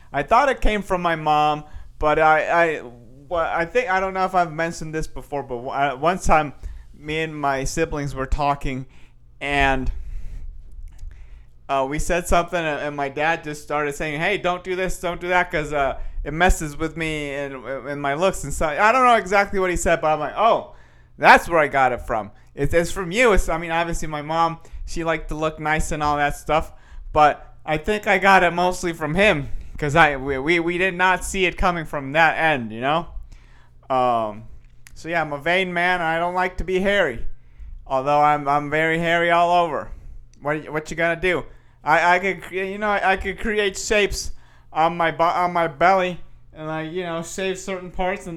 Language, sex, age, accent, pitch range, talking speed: English, male, 30-49, American, 145-180 Hz, 210 wpm